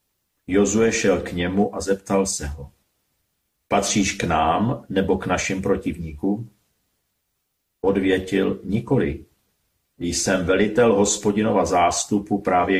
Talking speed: 110 wpm